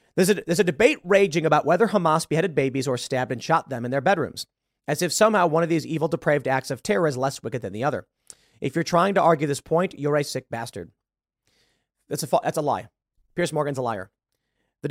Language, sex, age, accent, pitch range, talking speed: English, male, 30-49, American, 130-175 Hz, 225 wpm